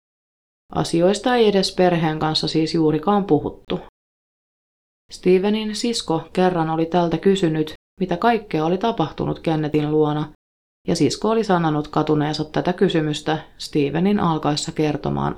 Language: Finnish